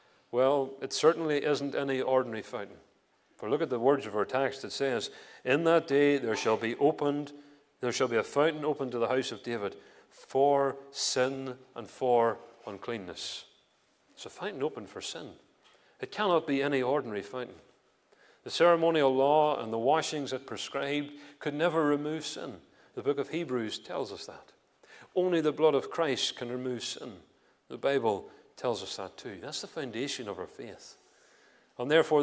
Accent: British